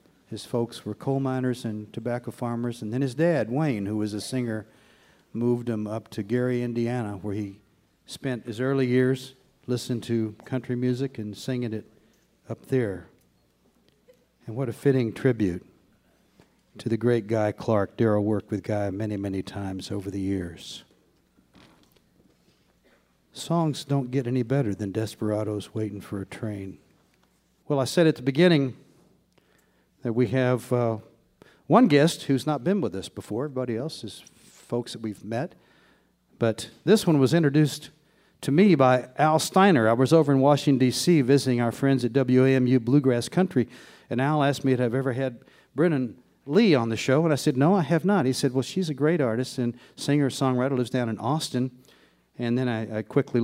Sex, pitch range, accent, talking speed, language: male, 110-140 Hz, American, 175 wpm, English